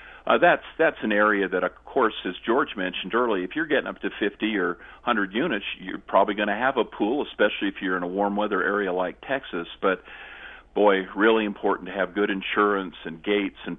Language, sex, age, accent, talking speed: English, male, 50-69, American, 215 wpm